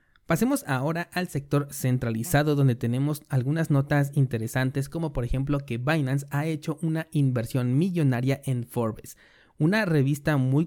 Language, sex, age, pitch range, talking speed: Spanish, male, 30-49, 125-150 Hz, 140 wpm